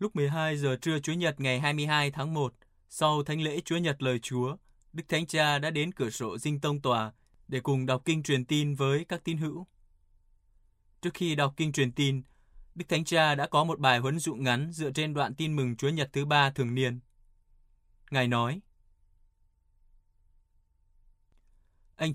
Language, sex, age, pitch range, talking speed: Vietnamese, male, 20-39, 120-155 Hz, 180 wpm